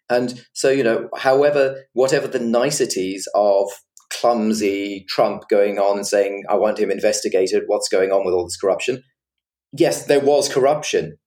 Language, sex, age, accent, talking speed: English, male, 30-49, British, 160 wpm